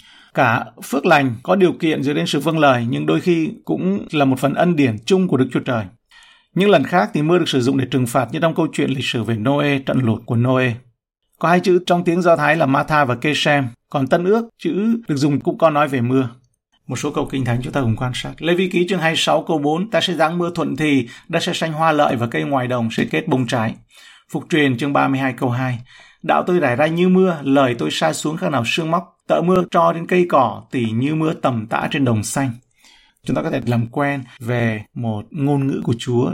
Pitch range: 125-165 Hz